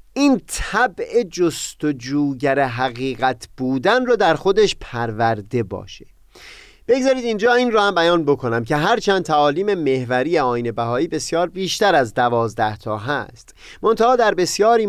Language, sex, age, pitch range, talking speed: Persian, male, 30-49, 125-195 Hz, 130 wpm